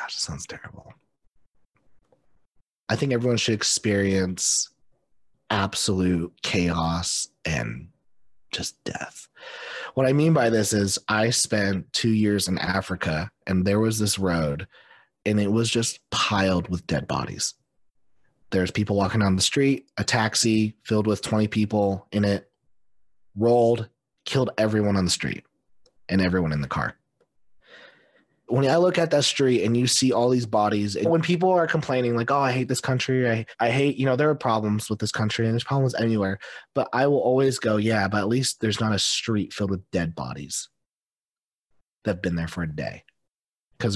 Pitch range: 100-130 Hz